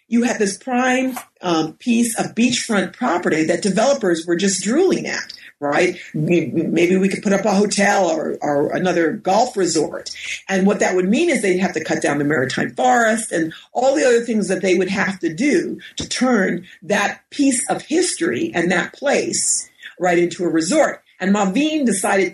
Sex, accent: female, American